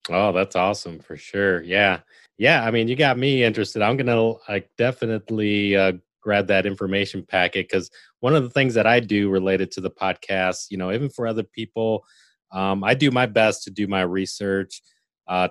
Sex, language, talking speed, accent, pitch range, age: male, English, 195 wpm, American, 90-105 Hz, 30-49